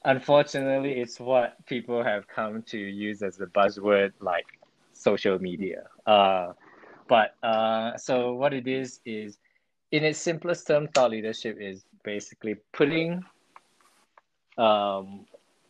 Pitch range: 100-125 Hz